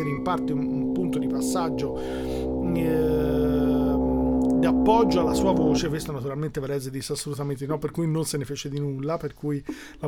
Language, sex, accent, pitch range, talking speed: Italian, male, native, 145-175 Hz, 180 wpm